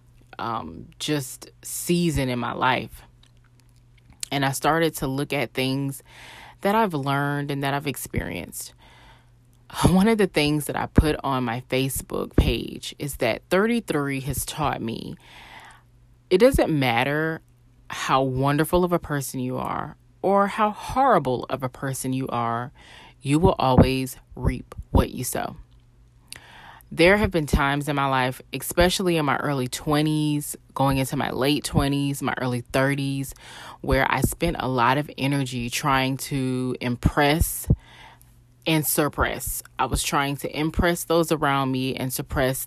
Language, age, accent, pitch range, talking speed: English, 20-39, American, 125-145 Hz, 145 wpm